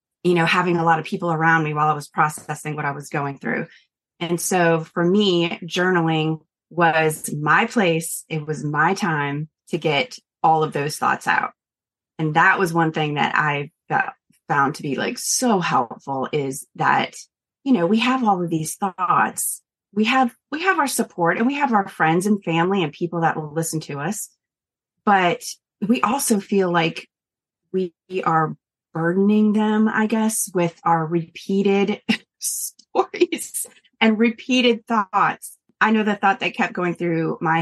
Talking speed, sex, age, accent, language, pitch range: 170 wpm, female, 30-49, American, English, 165-220 Hz